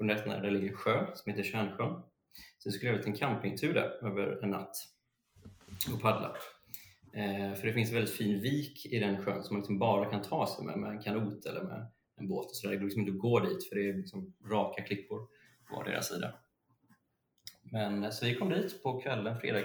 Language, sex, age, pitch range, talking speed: Swedish, male, 30-49, 100-120 Hz, 210 wpm